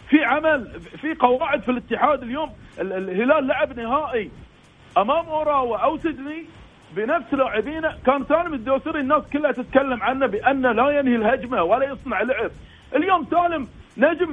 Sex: male